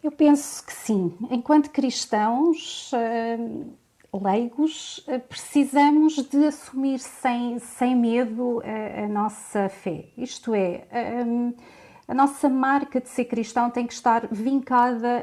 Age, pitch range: 30-49, 220-270 Hz